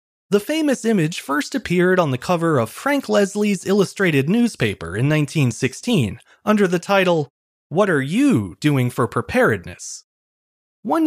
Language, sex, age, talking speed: English, male, 30-49, 135 wpm